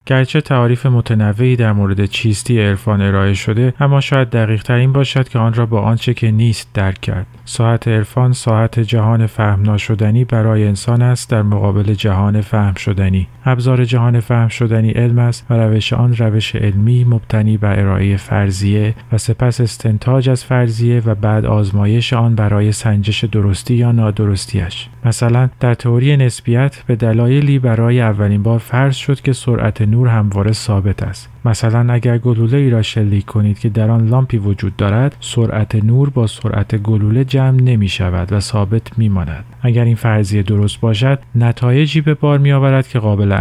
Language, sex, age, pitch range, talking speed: Persian, male, 40-59, 105-125 Hz, 165 wpm